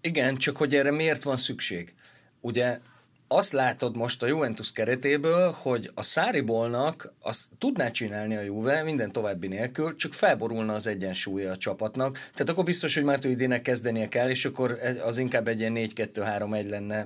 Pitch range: 115-140 Hz